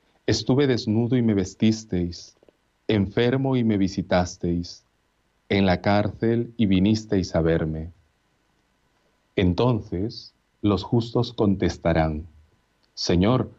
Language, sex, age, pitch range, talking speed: Spanish, male, 40-59, 90-115 Hz, 95 wpm